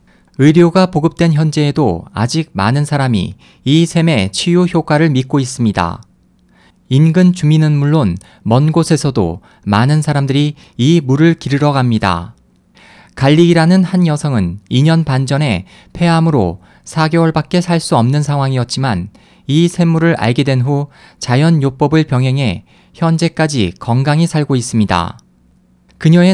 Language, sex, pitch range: Korean, male, 120-165 Hz